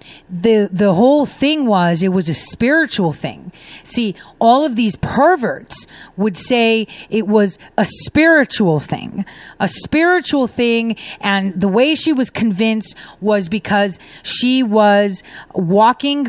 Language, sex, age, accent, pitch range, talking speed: English, female, 40-59, American, 190-255 Hz, 135 wpm